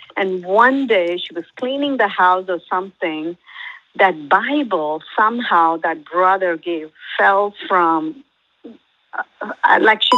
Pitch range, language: 170-230 Hz, English